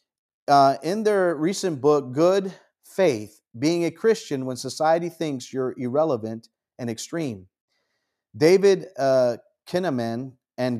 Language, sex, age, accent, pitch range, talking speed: English, male, 40-59, American, 135-170 Hz, 115 wpm